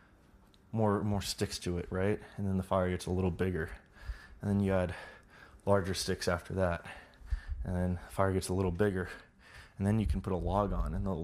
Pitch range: 90-105 Hz